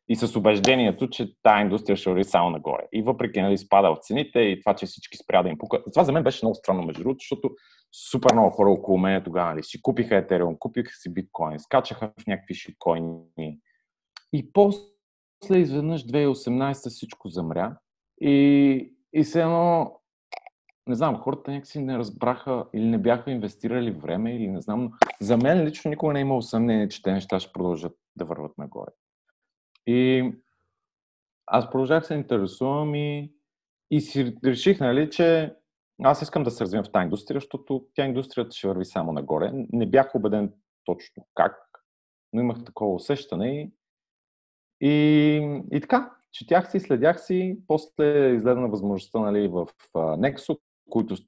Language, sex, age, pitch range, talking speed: Bulgarian, male, 30-49, 95-145 Hz, 165 wpm